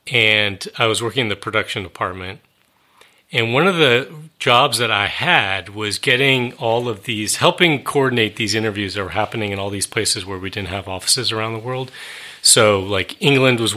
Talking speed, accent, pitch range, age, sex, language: 190 wpm, American, 100-125 Hz, 30-49, male, English